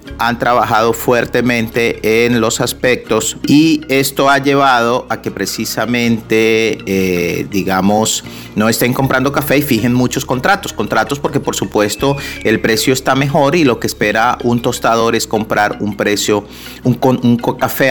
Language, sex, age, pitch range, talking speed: Spanish, male, 40-59, 105-130 Hz, 145 wpm